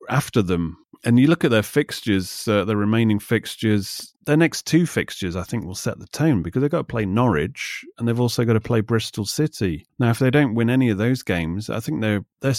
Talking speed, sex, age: 235 wpm, male, 30-49